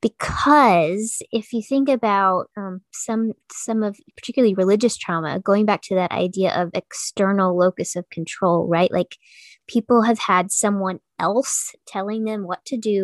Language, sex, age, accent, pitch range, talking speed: English, female, 20-39, American, 185-230 Hz, 155 wpm